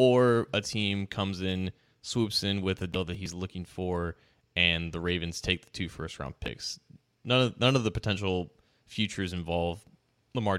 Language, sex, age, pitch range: English, male, 20-39, 95-115 Hz